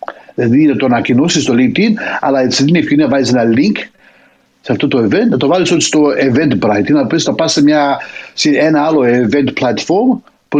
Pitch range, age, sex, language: 130-185 Hz, 60-79, male, Greek